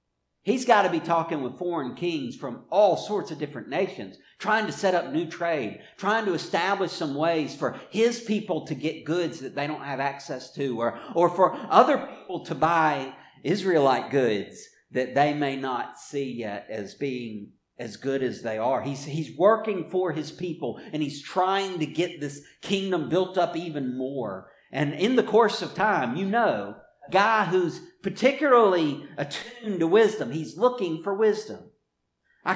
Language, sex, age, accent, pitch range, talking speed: English, male, 50-69, American, 140-195 Hz, 175 wpm